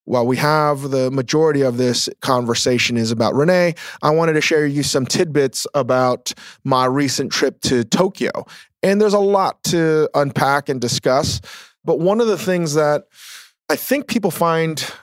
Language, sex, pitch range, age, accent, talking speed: English, male, 120-150 Hz, 30-49, American, 170 wpm